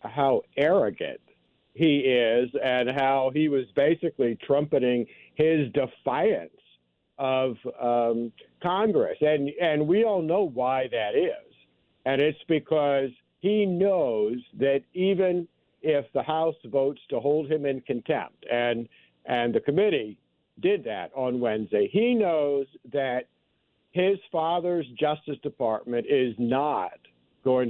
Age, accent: 50-69, American